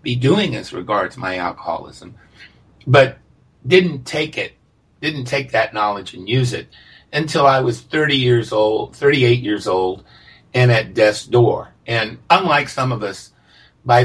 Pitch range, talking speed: 105-130 Hz, 155 wpm